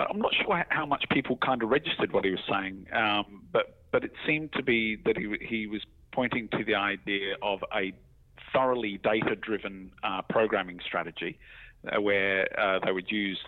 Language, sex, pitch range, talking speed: English, male, 95-105 Hz, 185 wpm